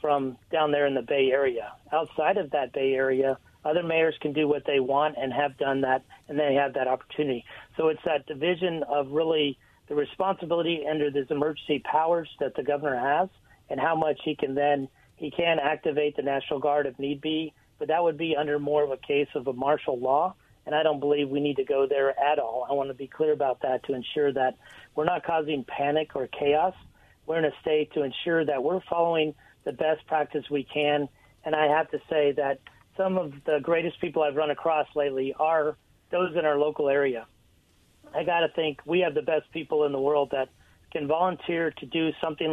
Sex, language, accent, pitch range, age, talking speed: male, English, American, 140-155 Hz, 40-59, 215 wpm